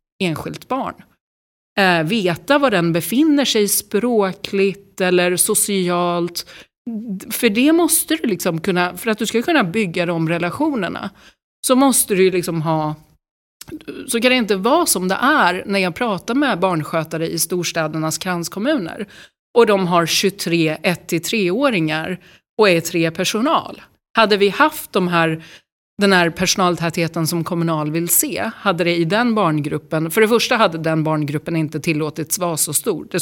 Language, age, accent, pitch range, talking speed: Swedish, 30-49, native, 170-230 Hz, 155 wpm